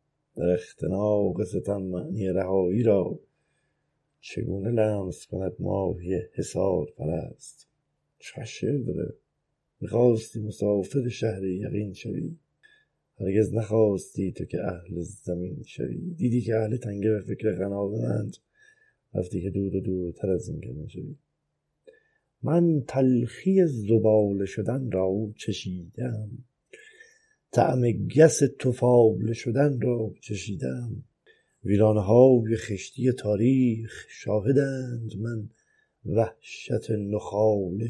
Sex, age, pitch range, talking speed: male, 50-69, 100-125 Hz, 100 wpm